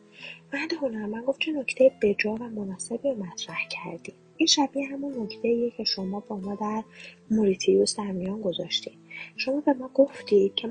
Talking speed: 185 wpm